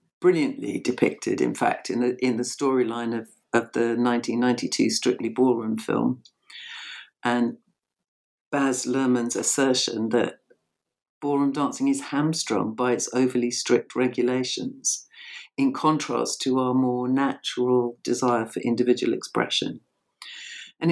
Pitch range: 125-155 Hz